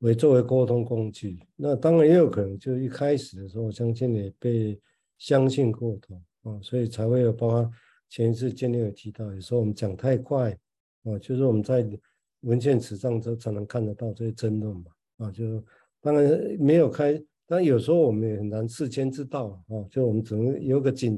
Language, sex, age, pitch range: Chinese, male, 50-69, 110-130 Hz